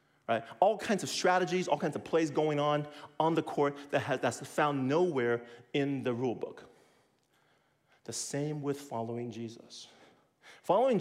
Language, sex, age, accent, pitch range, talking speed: English, male, 40-59, American, 130-180 Hz, 160 wpm